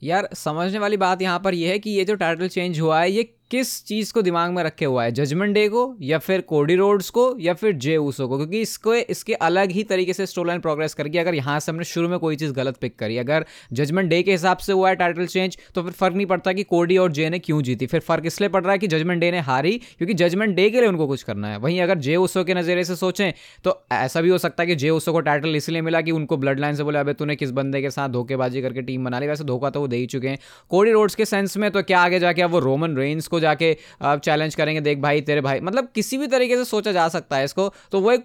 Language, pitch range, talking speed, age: Hindi, 150-190 Hz, 275 wpm, 20-39